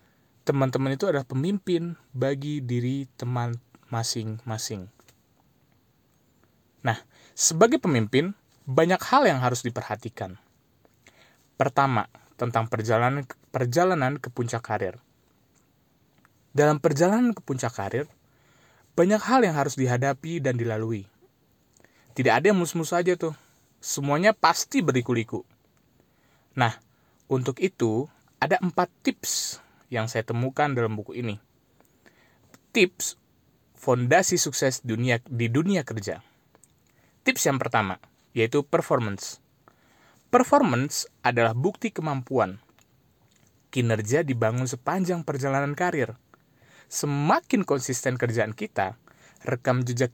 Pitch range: 115-150 Hz